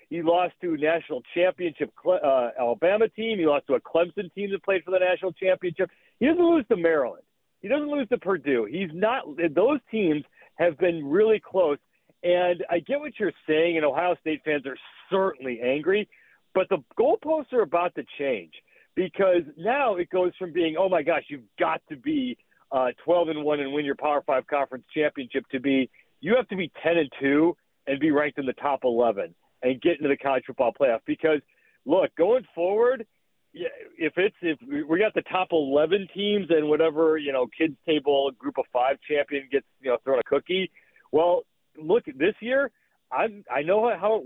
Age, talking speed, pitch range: 50-69, 195 wpm, 150-205 Hz